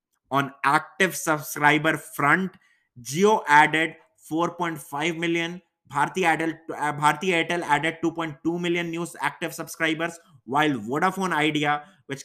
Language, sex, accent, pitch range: English, male, Indian, 145-170 Hz